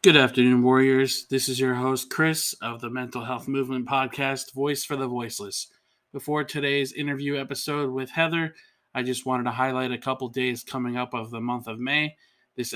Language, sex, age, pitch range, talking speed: English, male, 20-39, 125-140 Hz, 190 wpm